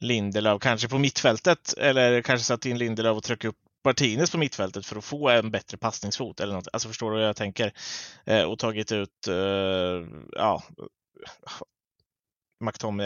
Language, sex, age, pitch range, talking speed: Swedish, male, 20-39, 100-115 Hz, 160 wpm